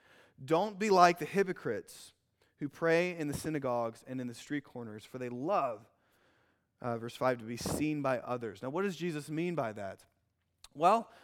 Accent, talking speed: American, 180 wpm